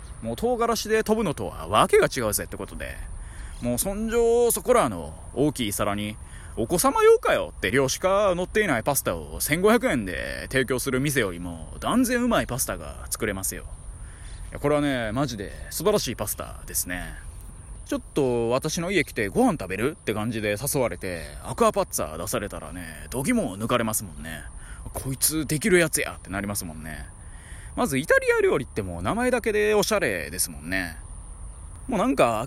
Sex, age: male, 20-39